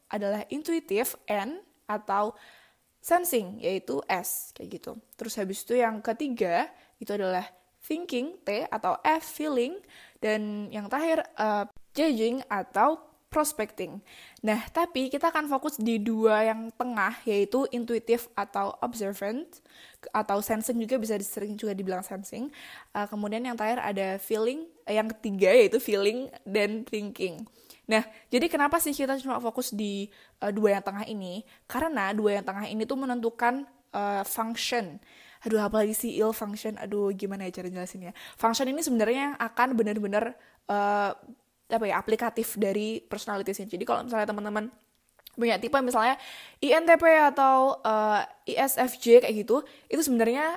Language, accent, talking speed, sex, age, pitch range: Indonesian, native, 140 wpm, female, 10-29, 210-260 Hz